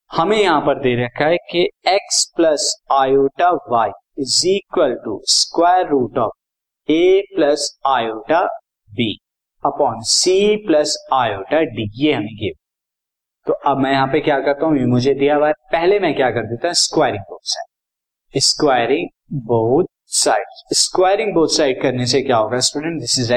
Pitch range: 130-170 Hz